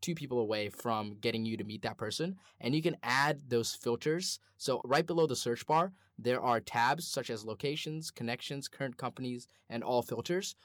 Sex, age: male, 10-29